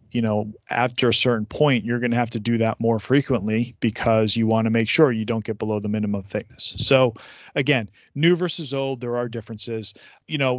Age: 30-49